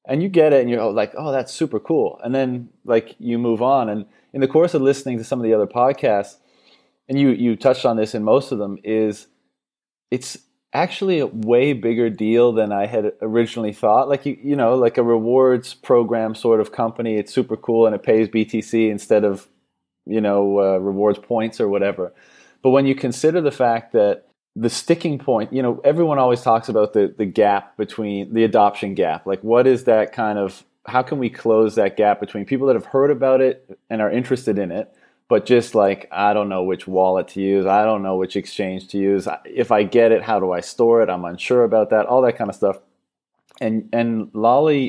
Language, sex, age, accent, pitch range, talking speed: English, male, 30-49, American, 105-130 Hz, 220 wpm